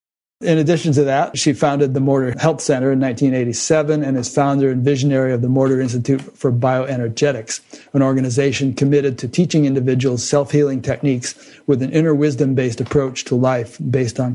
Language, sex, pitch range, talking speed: English, male, 125-145 Hz, 165 wpm